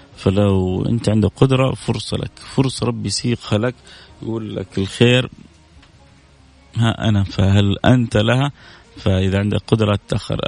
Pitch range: 100-120 Hz